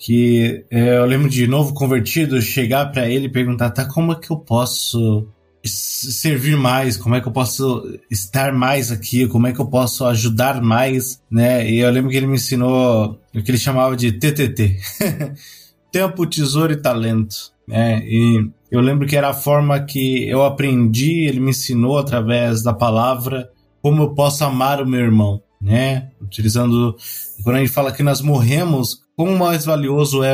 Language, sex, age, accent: Portuguese, male, 20-39, Brazilian